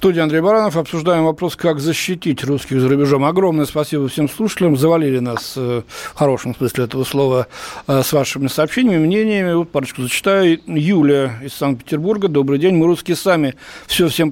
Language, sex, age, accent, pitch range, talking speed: Russian, male, 60-79, native, 140-185 Hz, 170 wpm